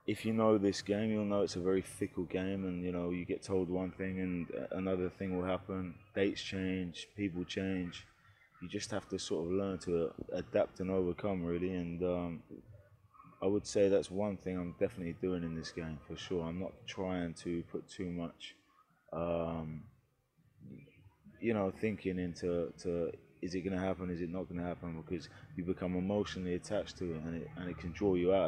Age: 20-39